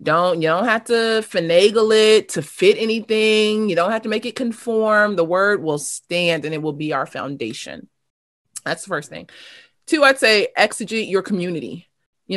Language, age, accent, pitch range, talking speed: English, 30-49, American, 175-220 Hz, 185 wpm